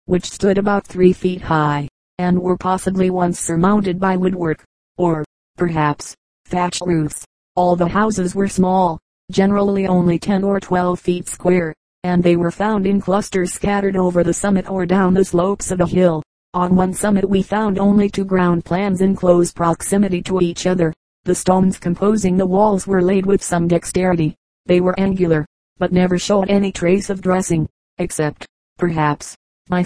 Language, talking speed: English, 170 wpm